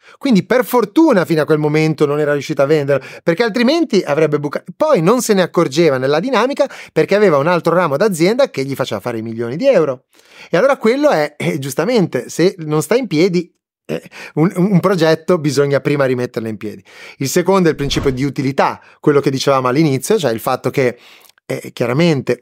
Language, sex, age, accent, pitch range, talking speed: Italian, male, 30-49, native, 130-185 Hz, 200 wpm